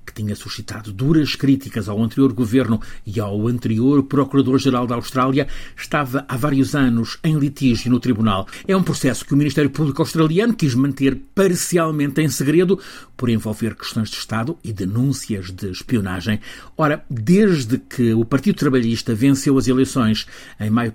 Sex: male